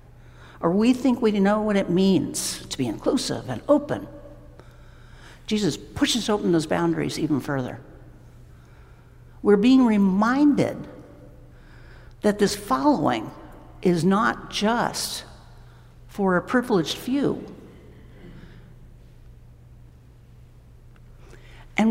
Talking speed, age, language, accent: 95 wpm, 60-79, English, American